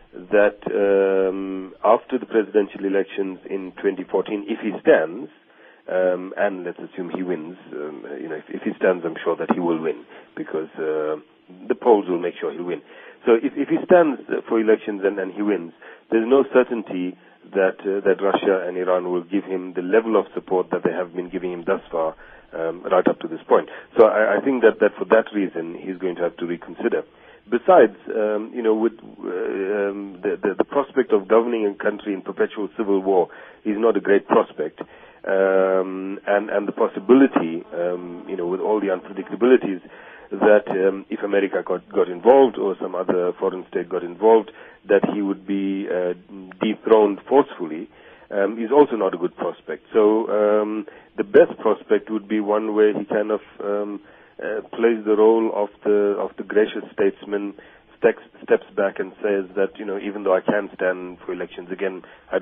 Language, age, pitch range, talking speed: English, 40-59, 90-110 Hz, 190 wpm